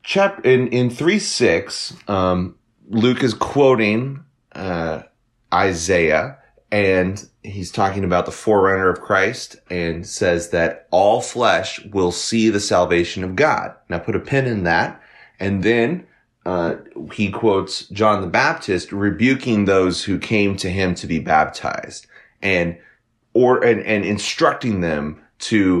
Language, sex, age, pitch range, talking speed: English, male, 30-49, 95-125 Hz, 135 wpm